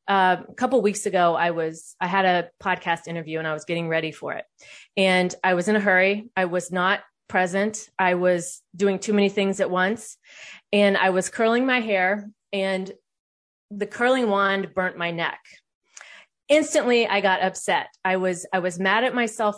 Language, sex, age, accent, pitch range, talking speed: English, female, 30-49, American, 185-230 Hz, 190 wpm